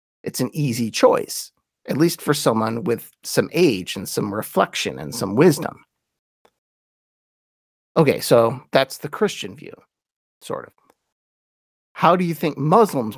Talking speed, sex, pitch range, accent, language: 135 wpm, male, 115-160 Hz, American, English